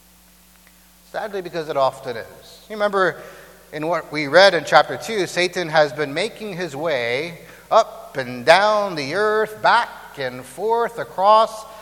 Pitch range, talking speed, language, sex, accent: 140-215 Hz, 145 wpm, English, male, American